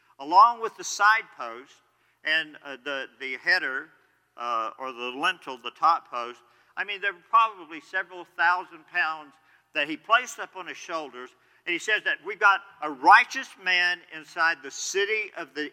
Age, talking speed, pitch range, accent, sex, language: 50-69, 175 wpm, 160-240 Hz, American, male, English